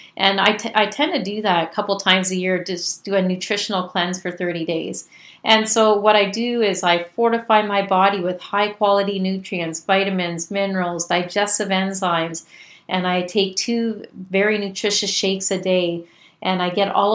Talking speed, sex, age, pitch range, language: 180 wpm, female, 40-59, 185-215 Hz, English